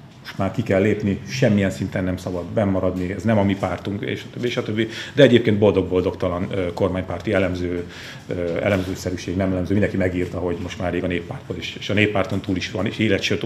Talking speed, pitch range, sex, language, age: 205 wpm, 95-110 Hz, male, Hungarian, 40-59